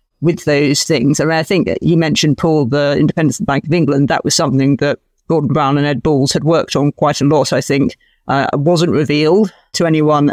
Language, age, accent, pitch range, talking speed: English, 40-59, British, 140-160 Hz, 215 wpm